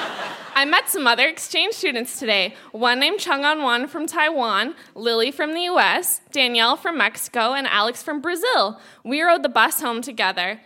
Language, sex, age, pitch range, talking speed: English, female, 20-39, 245-350 Hz, 165 wpm